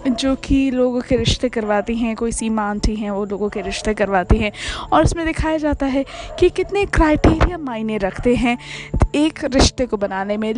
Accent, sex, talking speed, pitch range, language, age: native, female, 185 wpm, 235-300 Hz, Hindi, 20-39